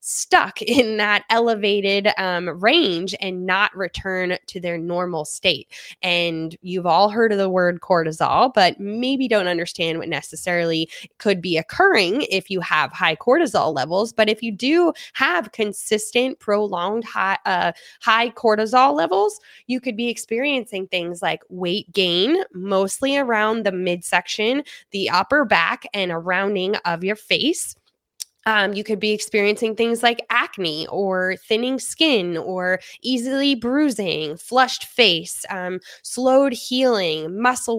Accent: American